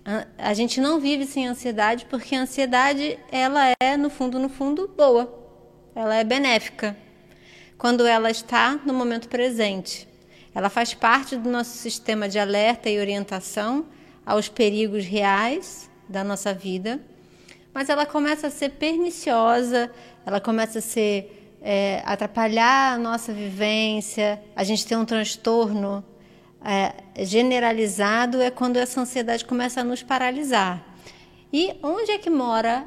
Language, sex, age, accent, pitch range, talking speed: Portuguese, female, 20-39, Brazilian, 215-265 Hz, 135 wpm